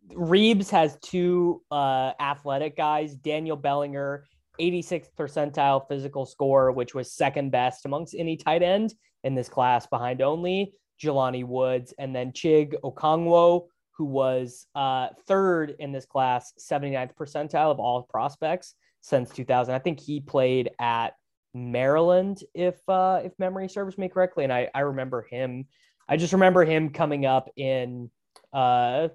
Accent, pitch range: American, 130-170 Hz